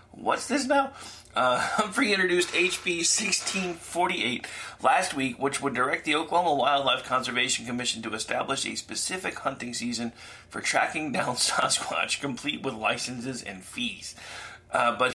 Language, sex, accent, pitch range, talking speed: English, male, American, 125-175 Hz, 140 wpm